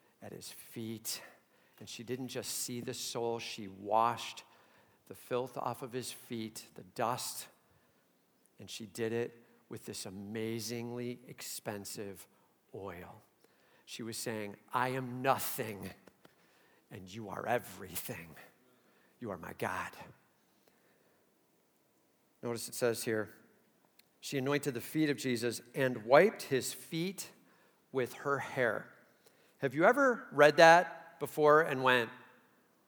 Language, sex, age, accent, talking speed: English, male, 50-69, American, 125 wpm